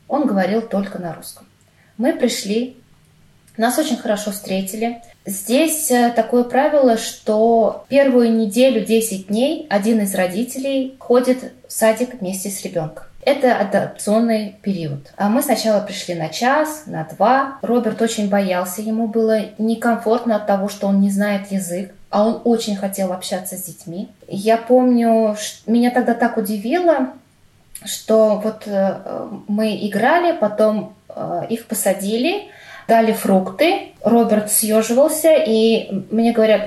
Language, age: Russian, 20-39